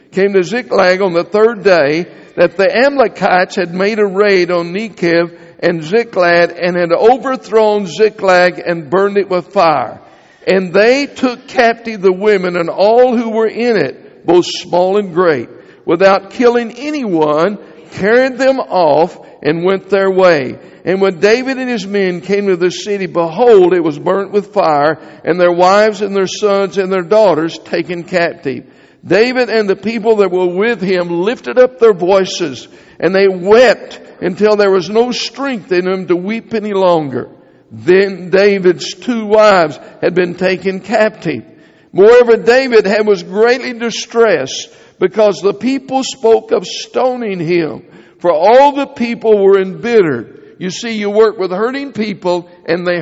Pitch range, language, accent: 180-225 Hz, English, American